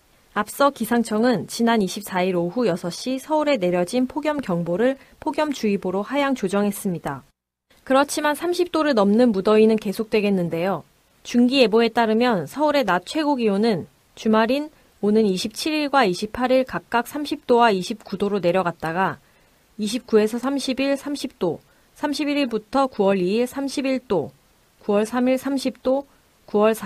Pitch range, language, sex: 190-260 Hz, Korean, female